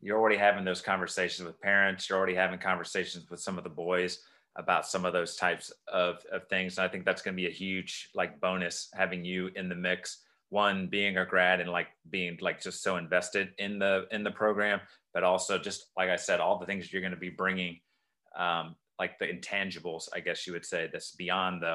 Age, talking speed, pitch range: 30-49, 220 wpm, 90-105 Hz